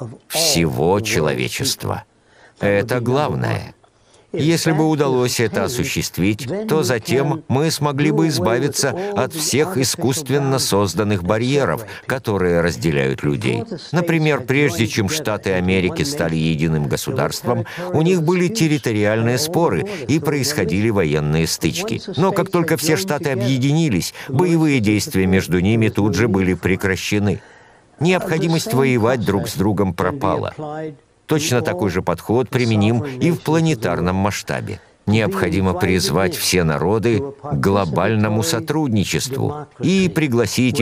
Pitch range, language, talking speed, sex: 100-150 Hz, Russian, 115 wpm, male